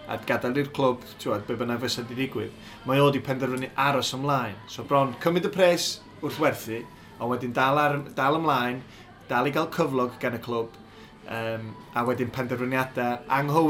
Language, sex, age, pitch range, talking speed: English, male, 20-39, 115-135 Hz, 95 wpm